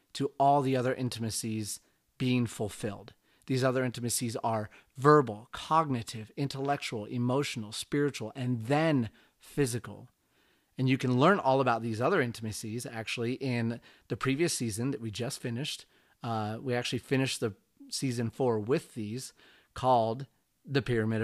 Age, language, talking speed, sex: 30-49, English, 140 wpm, male